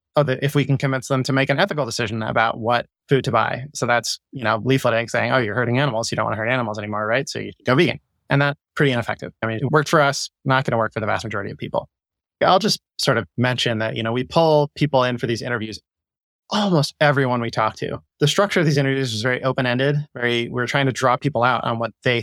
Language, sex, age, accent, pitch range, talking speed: English, male, 20-39, American, 115-150 Hz, 260 wpm